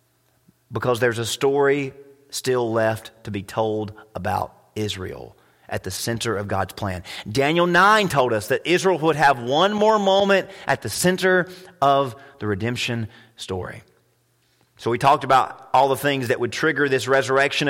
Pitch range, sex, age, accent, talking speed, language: 115-160 Hz, male, 30-49, American, 160 wpm, English